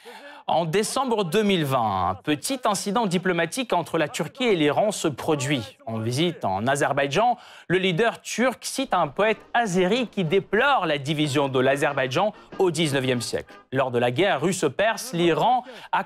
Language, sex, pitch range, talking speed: French, male, 145-215 Hz, 155 wpm